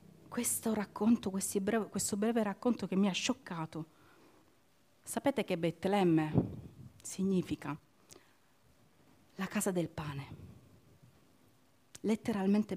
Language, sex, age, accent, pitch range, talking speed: Italian, female, 40-59, native, 160-210 Hz, 95 wpm